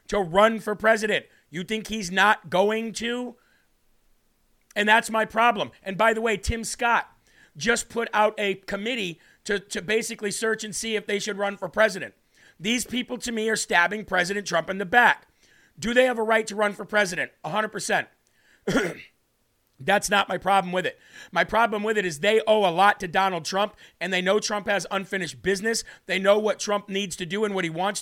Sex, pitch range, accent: male, 190-220 Hz, American